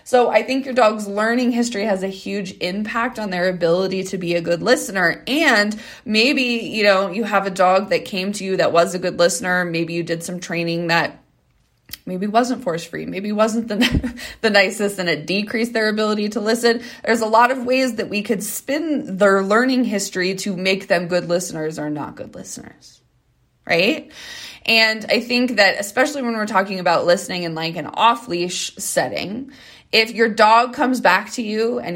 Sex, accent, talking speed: female, American, 190 wpm